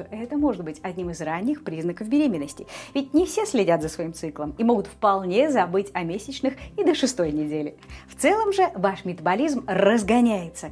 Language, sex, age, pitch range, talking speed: English, female, 30-49, 175-260 Hz, 175 wpm